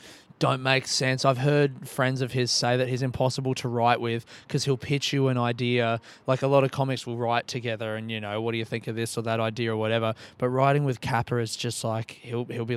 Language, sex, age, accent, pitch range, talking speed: English, male, 20-39, Australian, 120-140 Hz, 255 wpm